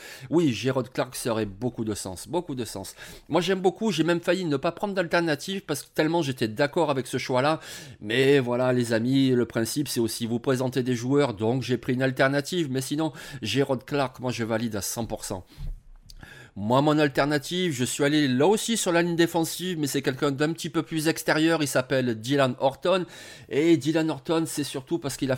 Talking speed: 205 wpm